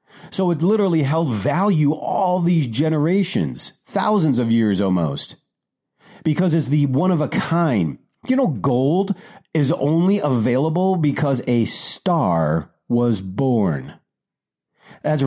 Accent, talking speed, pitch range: American, 120 wpm, 120-165 Hz